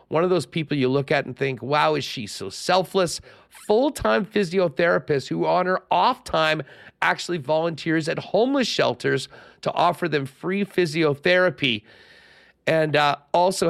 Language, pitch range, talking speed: English, 135-170 Hz, 145 wpm